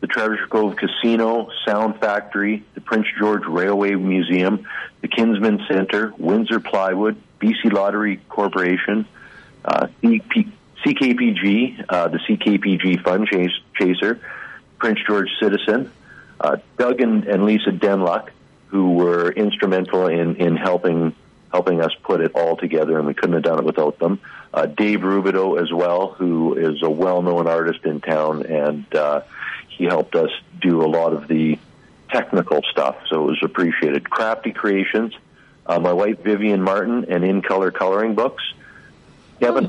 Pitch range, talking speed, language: 85-105 Hz, 145 wpm, English